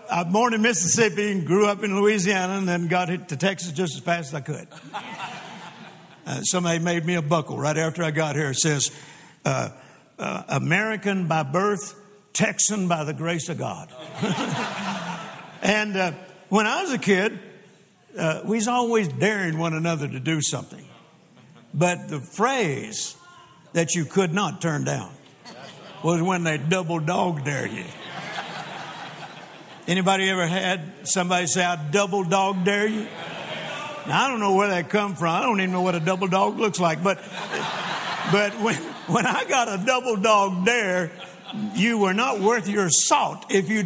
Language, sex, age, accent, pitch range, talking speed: English, male, 60-79, American, 160-200 Hz, 170 wpm